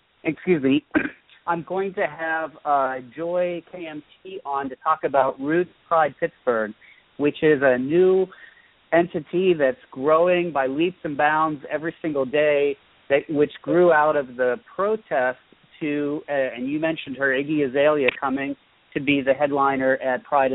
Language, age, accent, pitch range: English, 40-59, American, 130-170 Hz